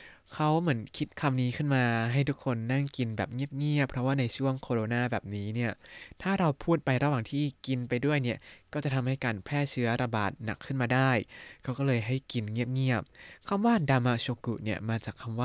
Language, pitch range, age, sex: Thai, 115-140 Hz, 20-39, male